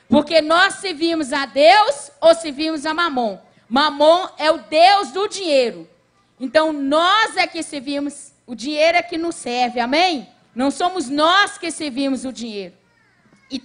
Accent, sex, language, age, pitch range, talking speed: Brazilian, female, Portuguese, 40-59, 275-350 Hz, 155 wpm